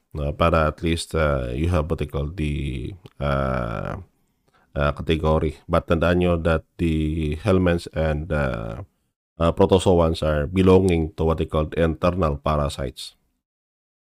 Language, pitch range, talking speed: Filipino, 75-95 Hz, 135 wpm